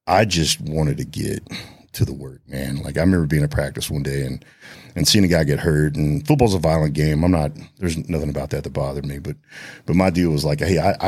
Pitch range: 75-90 Hz